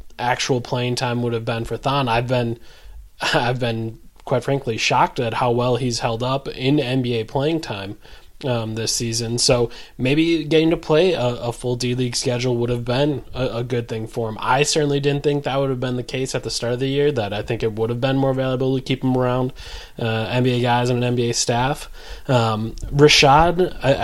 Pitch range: 115-130 Hz